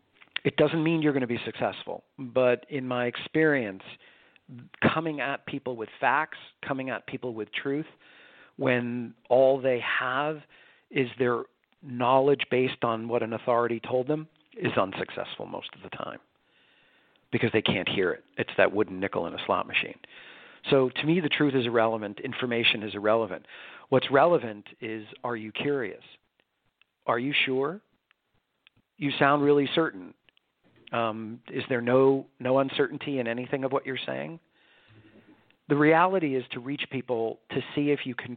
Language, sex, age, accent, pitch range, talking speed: English, male, 40-59, American, 120-145 Hz, 160 wpm